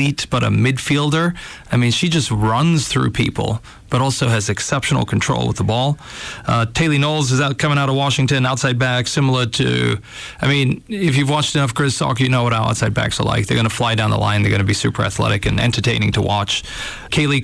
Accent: American